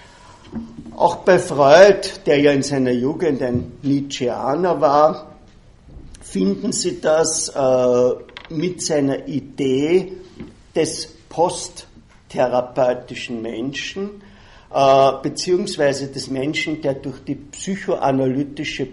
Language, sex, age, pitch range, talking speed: German, male, 50-69, 130-170 Hz, 90 wpm